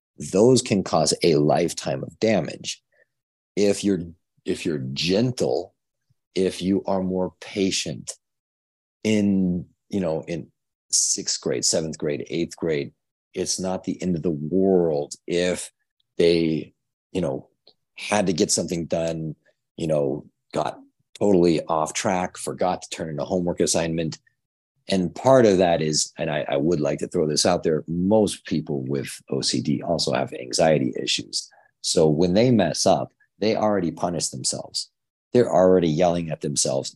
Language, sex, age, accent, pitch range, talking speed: English, male, 40-59, American, 75-95 Hz, 150 wpm